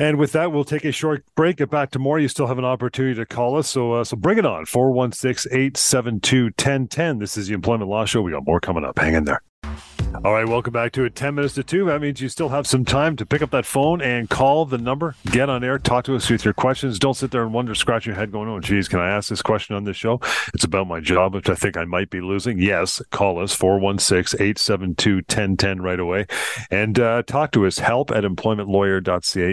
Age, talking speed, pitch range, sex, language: 40-59, 260 wpm, 95-130 Hz, male, English